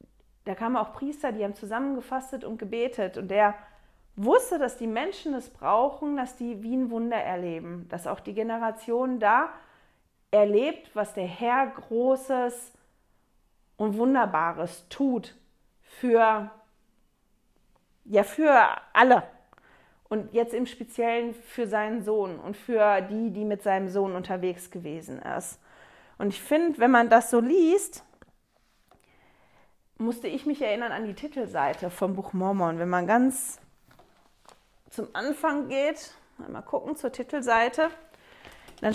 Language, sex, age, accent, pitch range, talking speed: German, female, 40-59, German, 210-265 Hz, 130 wpm